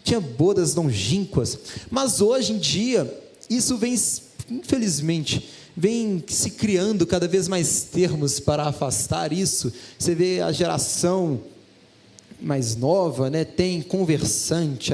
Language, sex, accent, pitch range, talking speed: Portuguese, male, Brazilian, 160-235 Hz, 115 wpm